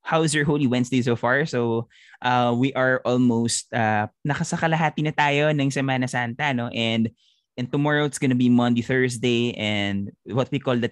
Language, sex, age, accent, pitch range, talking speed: Filipino, male, 20-39, native, 110-145 Hz, 175 wpm